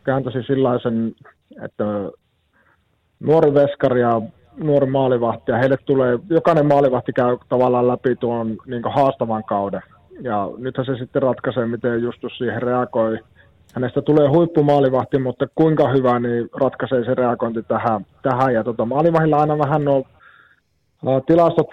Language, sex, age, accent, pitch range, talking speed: Finnish, male, 30-49, native, 115-140 Hz, 135 wpm